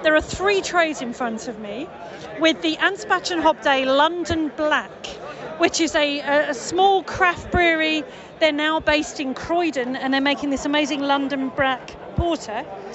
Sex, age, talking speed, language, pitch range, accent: female, 40-59, 160 wpm, English, 255-320 Hz, British